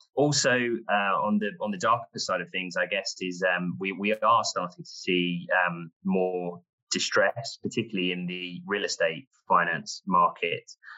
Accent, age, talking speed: British, 20-39, 165 wpm